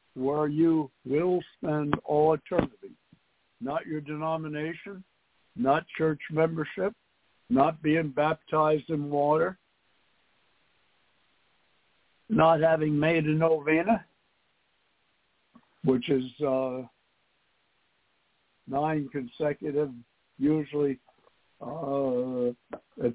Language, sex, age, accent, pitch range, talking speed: English, male, 60-79, American, 135-155 Hz, 75 wpm